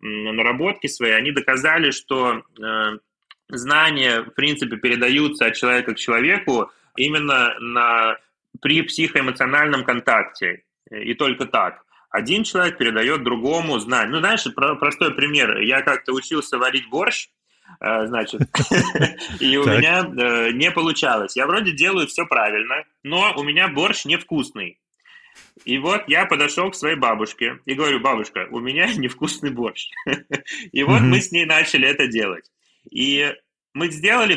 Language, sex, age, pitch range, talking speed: Russian, male, 20-39, 125-170 Hz, 140 wpm